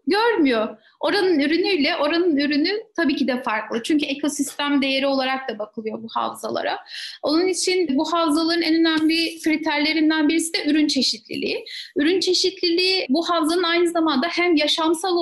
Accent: native